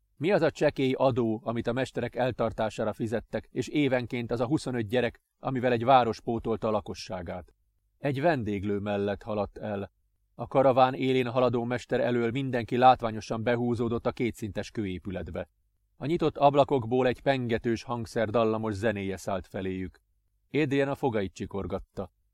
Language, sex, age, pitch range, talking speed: Hungarian, male, 30-49, 100-135 Hz, 140 wpm